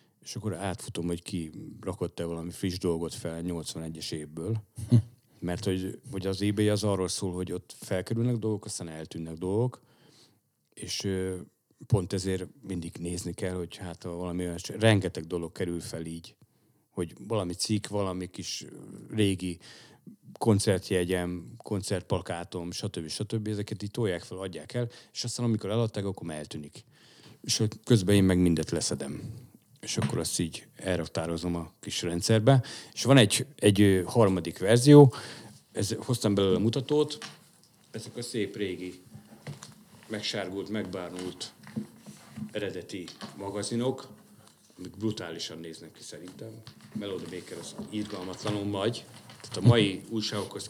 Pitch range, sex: 90-115 Hz, male